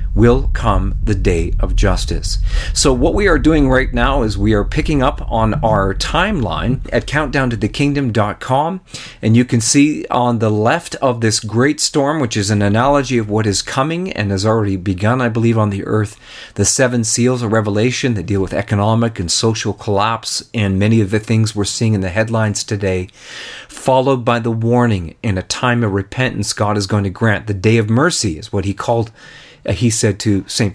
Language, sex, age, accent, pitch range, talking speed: English, male, 40-59, American, 100-125 Hz, 200 wpm